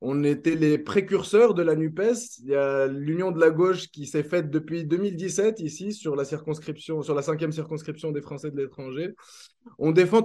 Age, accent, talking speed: 20-39, French, 180 wpm